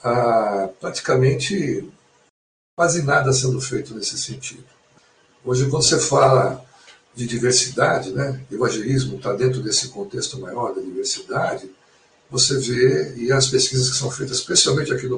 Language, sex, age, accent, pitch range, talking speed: Portuguese, male, 60-79, Brazilian, 125-160 Hz, 135 wpm